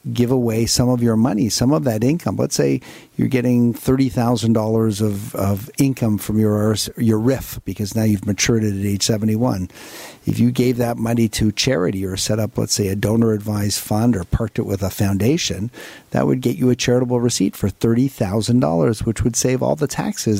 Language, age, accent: English, 50-69, American